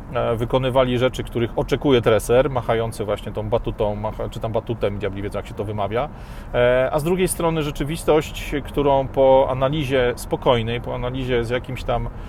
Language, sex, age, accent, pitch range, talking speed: Polish, male, 30-49, native, 110-130 Hz, 160 wpm